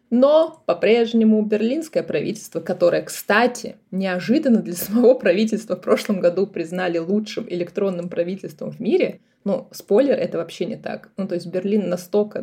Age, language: 20-39, Russian